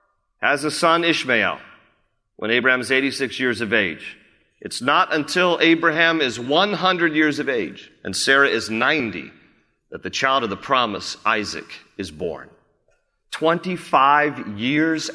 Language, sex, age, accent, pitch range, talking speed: English, male, 40-59, American, 120-170 Hz, 140 wpm